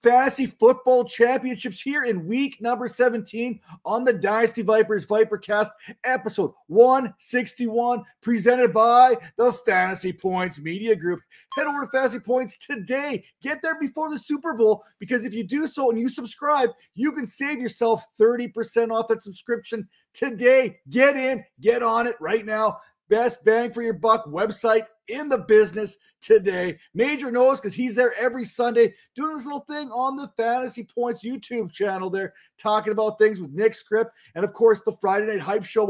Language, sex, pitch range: English, male, 210-250 Hz